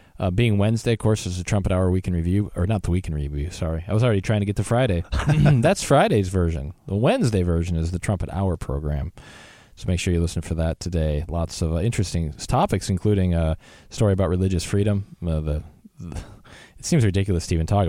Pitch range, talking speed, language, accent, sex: 80-100 Hz, 225 wpm, English, American, male